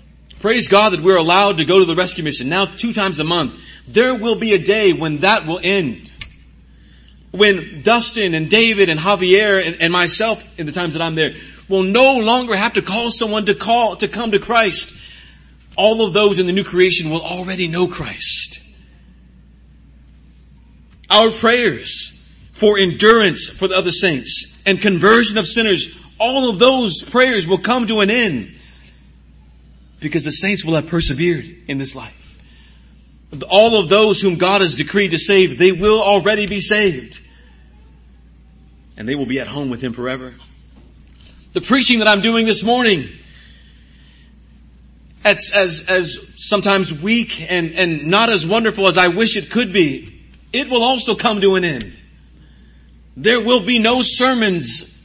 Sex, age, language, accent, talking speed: male, 40-59, English, American, 165 wpm